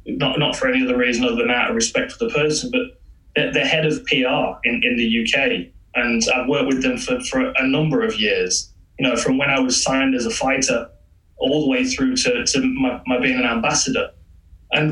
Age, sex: 20-39, male